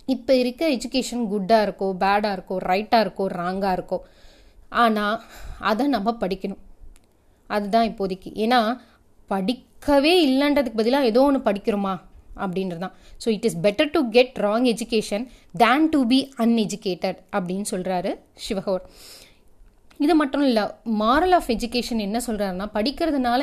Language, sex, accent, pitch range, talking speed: Tamil, female, native, 195-260 Hz, 125 wpm